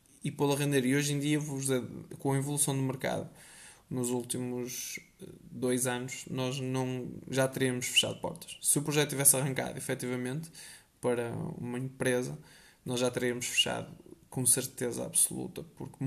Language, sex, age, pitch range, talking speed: Portuguese, male, 20-39, 125-145 Hz, 145 wpm